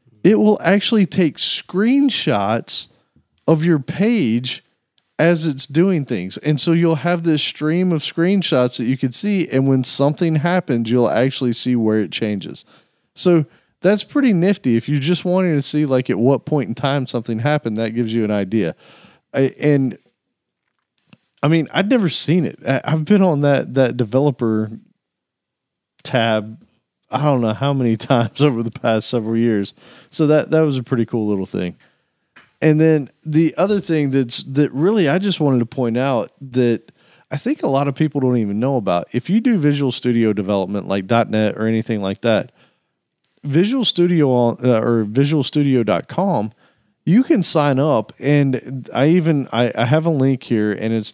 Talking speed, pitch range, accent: 175 wpm, 115-160 Hz, American